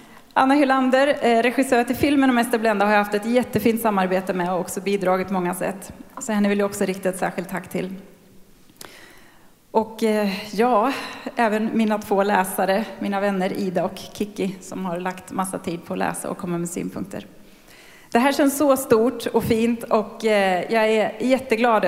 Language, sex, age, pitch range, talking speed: Swedish, female, 30-49, 185-225 Hz, 170 wpm